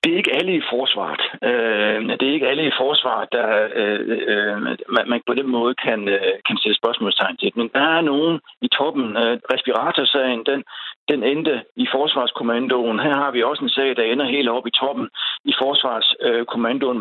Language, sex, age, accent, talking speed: Danish, male, 60-79, native, 175 wpm